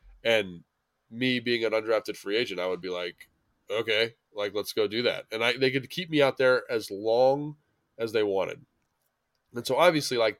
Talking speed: 195 wpm